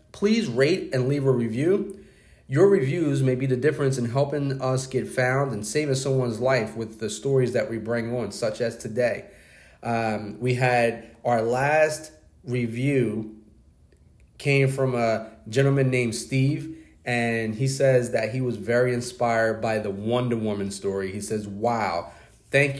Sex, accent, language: male, American, English